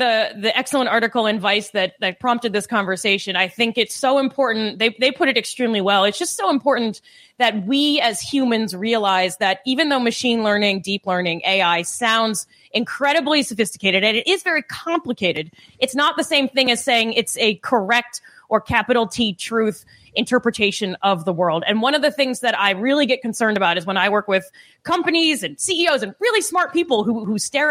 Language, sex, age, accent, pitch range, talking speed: English, female, 20-39, American, 205-275 Hz, 195 wpm